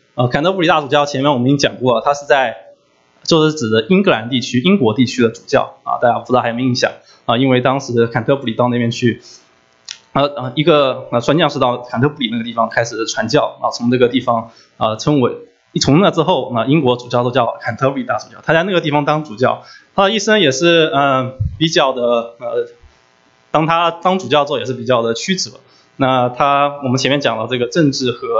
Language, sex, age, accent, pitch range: English, male, 20-39, Chinese, 120-150 Hz